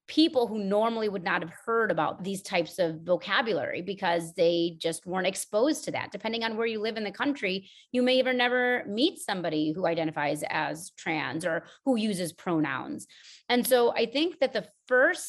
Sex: female